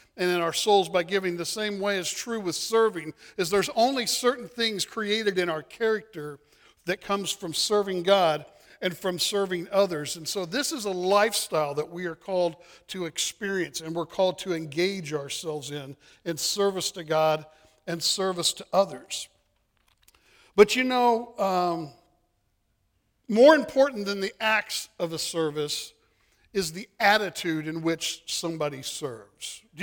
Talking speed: 155 wpm